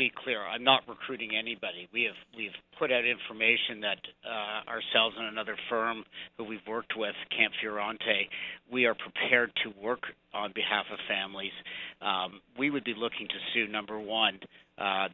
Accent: American